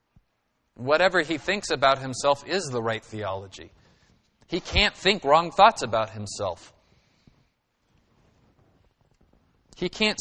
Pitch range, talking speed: 110-145 Hz, 105 wpm